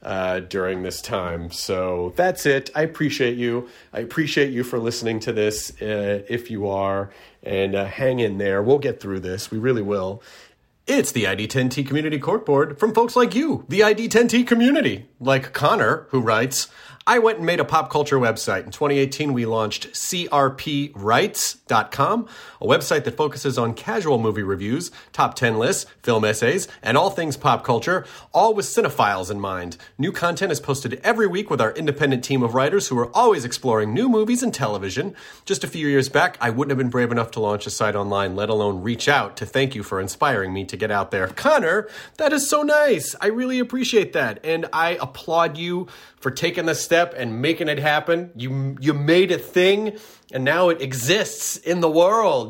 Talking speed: 195 wpm